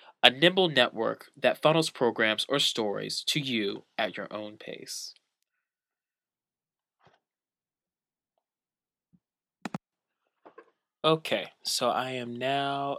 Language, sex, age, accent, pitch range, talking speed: English, male, 20-39, American, 105-125 Hz, 90 wpm